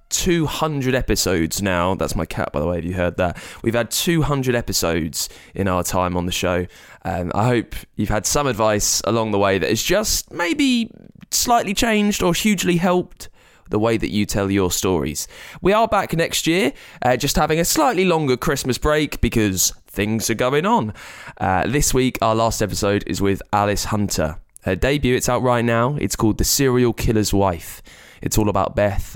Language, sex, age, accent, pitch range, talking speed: English, male, 20-39, British, 95-130 Hz, 190 wpm